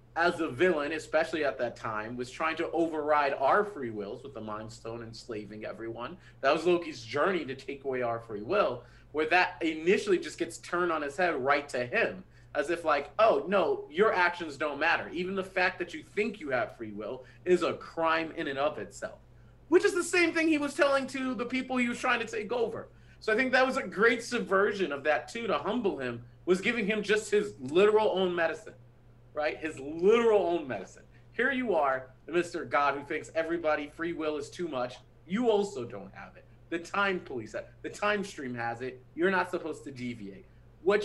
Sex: male